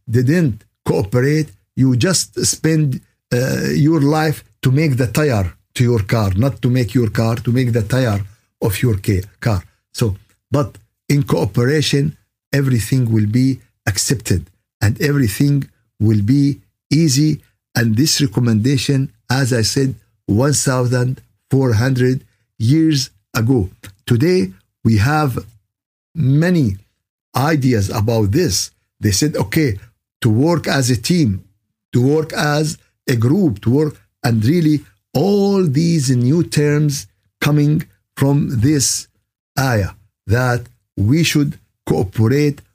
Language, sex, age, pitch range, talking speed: Arabic, male, 60-79, 105-140 Hz, 120 wpm